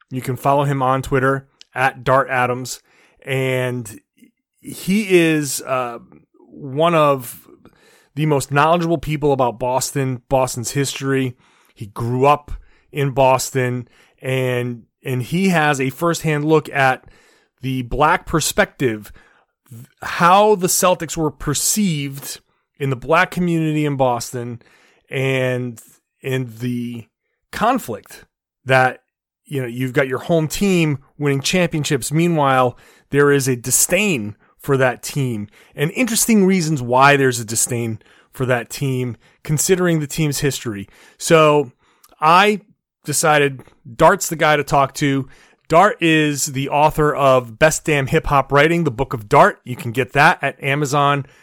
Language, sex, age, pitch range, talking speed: English, male, 30-49, 130-155 Hz, 135 wpm